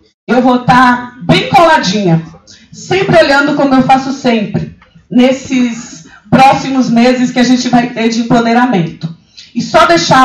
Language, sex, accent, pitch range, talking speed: Portuguese, female, Brazilian, 210-260 Hz, 140 wpm